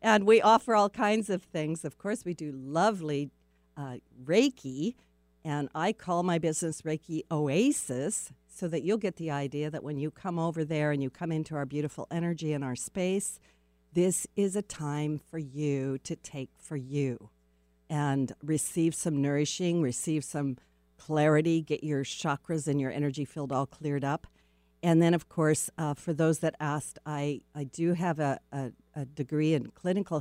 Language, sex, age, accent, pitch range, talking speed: English, female, 50-69, American, 140-165 Hz, 175 wpm